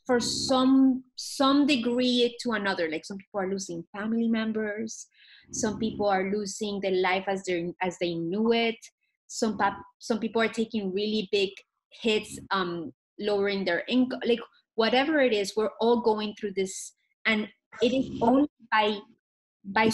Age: 30-49